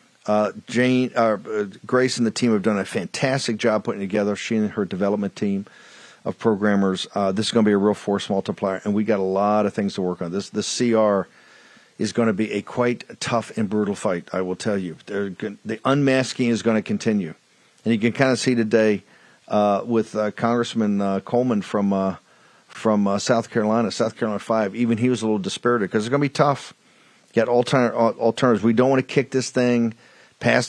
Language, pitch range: English, 110-135 Hz